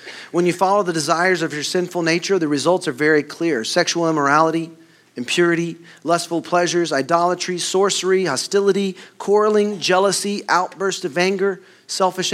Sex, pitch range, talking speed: male, 150-185 Hz, 135 wpm